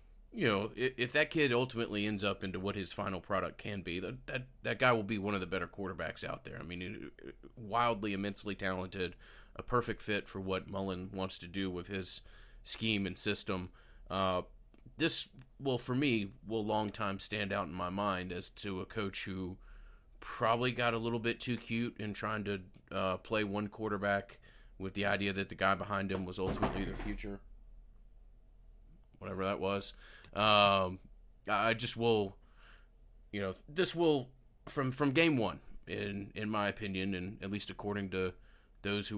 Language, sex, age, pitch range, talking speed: English, male, 30-49, 95-110 Hz, 180 wpm